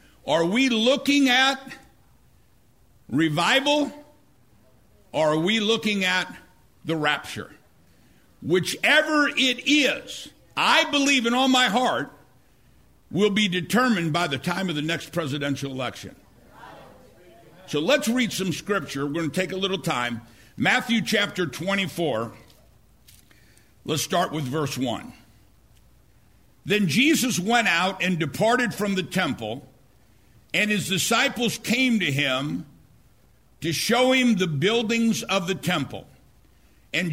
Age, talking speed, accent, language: 60-79, 125 wpm, American, English